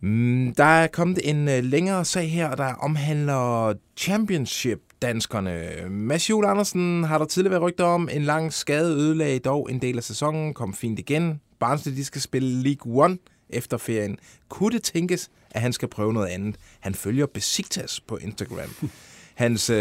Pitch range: 110-160 Hz